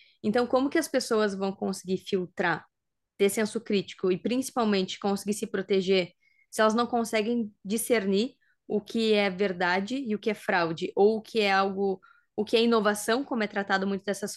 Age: 10-29